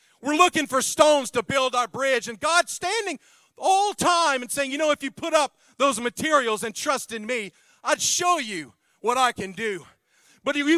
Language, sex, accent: English, male, American